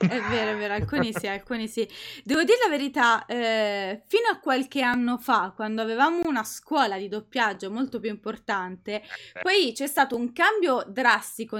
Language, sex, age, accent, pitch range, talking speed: Italian, female, 20-39, native, 205-275 Hz, 170 wpm